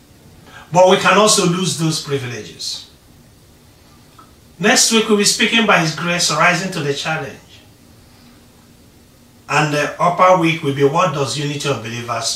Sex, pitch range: male, 120-195 Hz